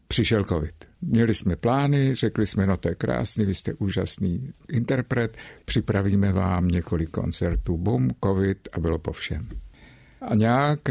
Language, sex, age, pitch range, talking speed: Czech, male, 60-79, 90-115 Hz, 150 wpm